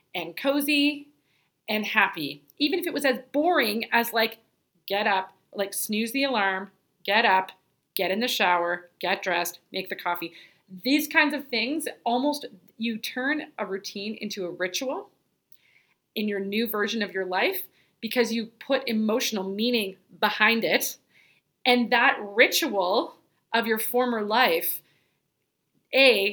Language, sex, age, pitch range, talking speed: English, female, 30-49, 195-235 Hz, 145 wpm